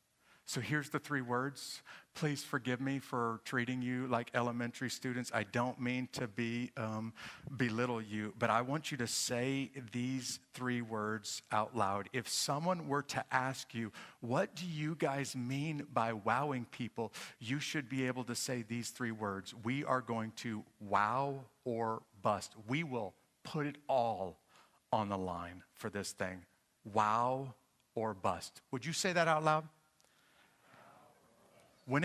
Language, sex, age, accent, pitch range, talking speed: English, male, 50-69, American, 115-150 Hz, 155 wpm